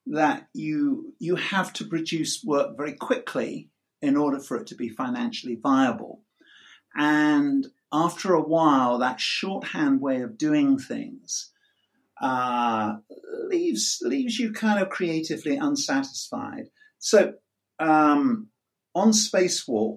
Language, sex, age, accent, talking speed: English, male, 50-69, British, 115 wpm